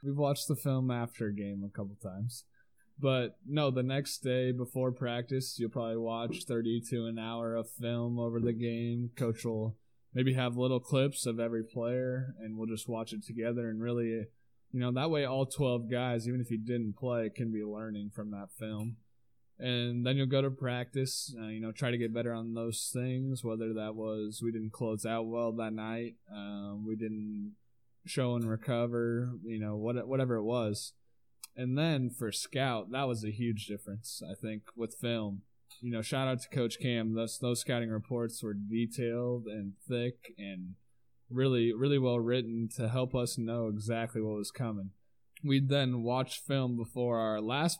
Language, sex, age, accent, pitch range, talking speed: English, male, 20-39, American, 115-125 Hz, 185 wpm